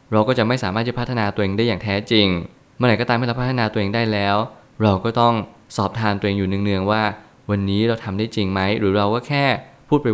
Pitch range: 100-120 Hz